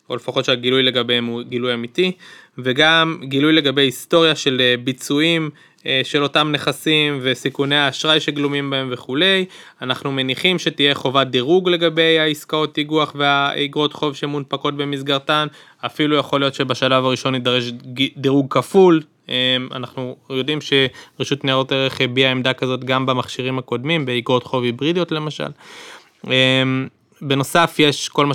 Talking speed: 125 wpm